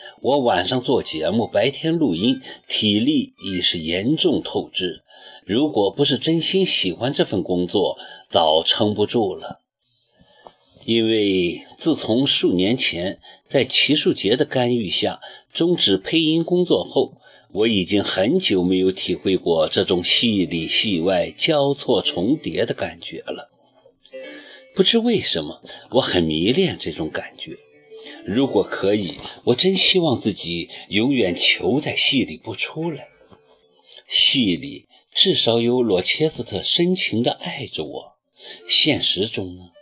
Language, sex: Chinese, male